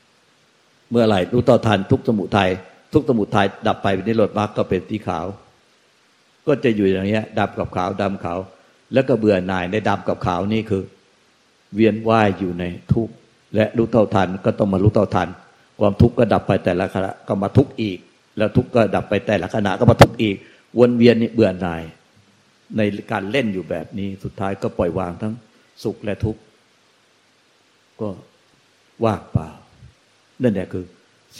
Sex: male